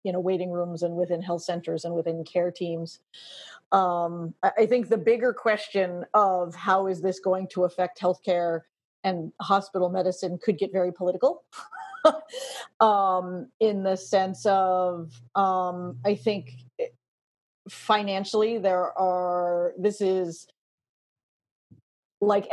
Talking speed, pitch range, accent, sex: 125 wpm, 175-195 Hz, American, female